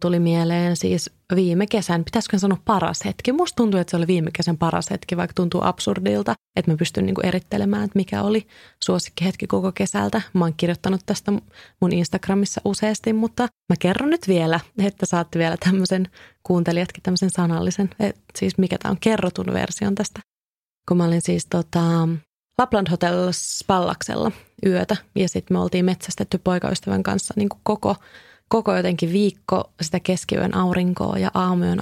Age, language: 30-49, Finnish